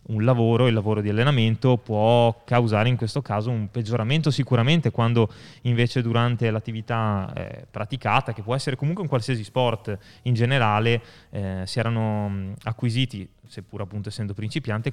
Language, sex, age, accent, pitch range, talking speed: Italian, male, 20-39, native, 110-130 Hz, 150 wpm